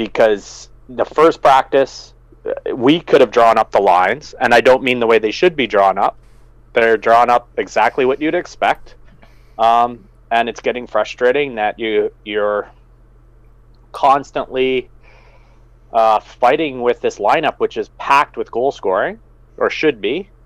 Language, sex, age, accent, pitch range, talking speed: English, male, 30-49, American, 115-145 Hz, 155 wpm